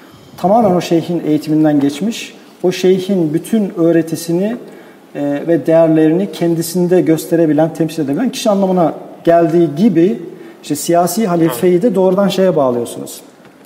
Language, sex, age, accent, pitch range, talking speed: Turkish, male, 50-69, native, 145-175 Hz, 115 wpm